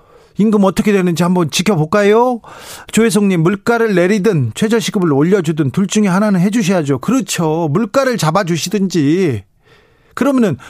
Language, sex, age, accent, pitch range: Korean, male, 40-59, native, 150-215 Hz